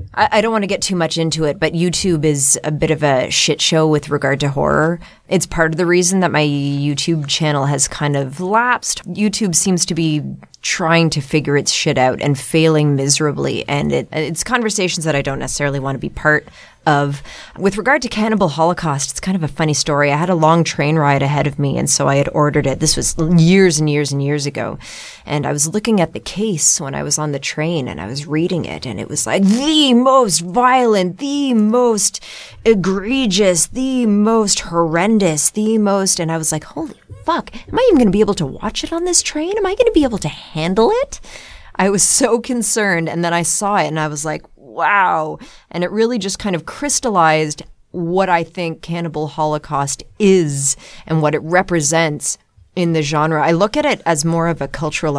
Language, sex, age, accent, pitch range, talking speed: English, female, 20-39, American, 150-205 Hz, 215 wpm